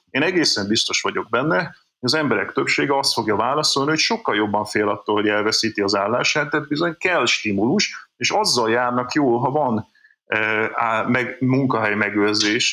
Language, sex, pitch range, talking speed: Hungarian, male, 110-160 Hz, 165 wpm